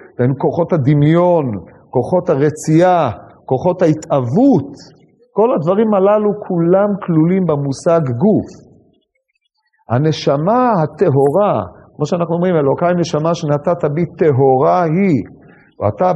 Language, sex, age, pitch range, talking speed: Hebrew, male, 40-59, 145-195 Hz, 95 wpm